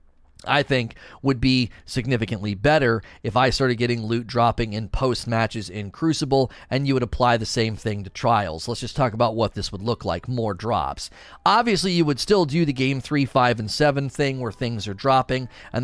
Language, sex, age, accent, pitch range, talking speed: English, male, 30-49, American, 110-140 Hz, 205 wpm